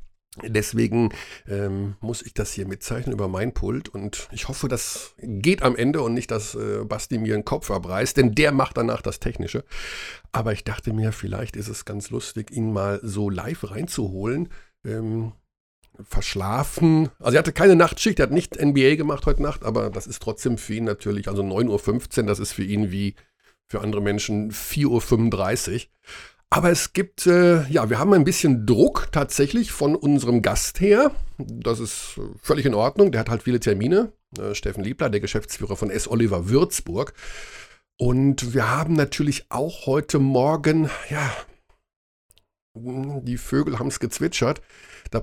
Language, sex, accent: German, male, German